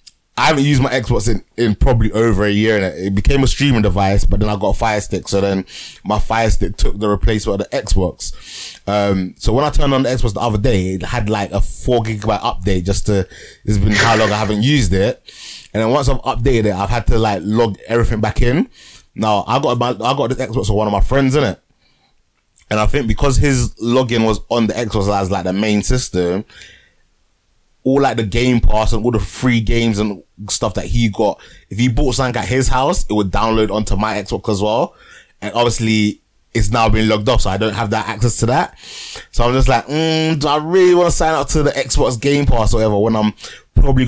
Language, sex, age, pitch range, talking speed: English, male, 20-39, 100-120 Hz, 235 wpm